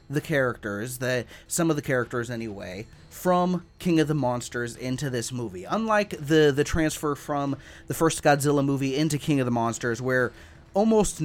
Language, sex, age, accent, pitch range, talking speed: English, male, 30-49, American, 125-165 Hz, 170 wpm